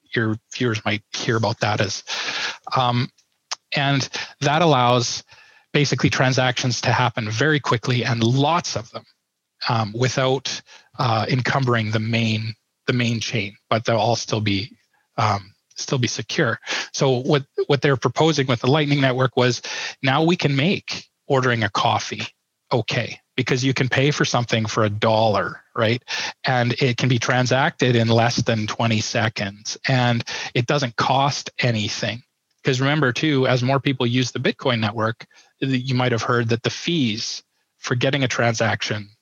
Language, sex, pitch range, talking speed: English, male, 115-140 Hz, 160 wpm